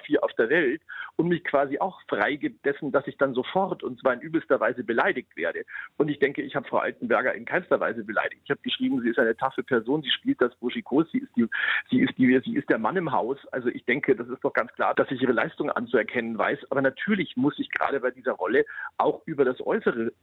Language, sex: German, male